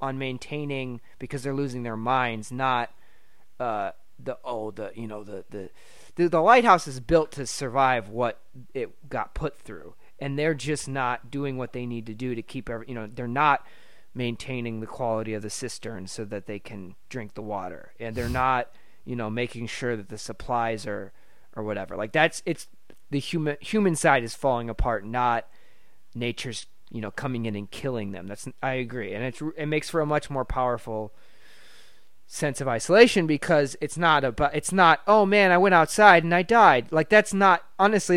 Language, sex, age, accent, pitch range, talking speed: English, male, 30-49, American, 120-160 Hz, 190 wpm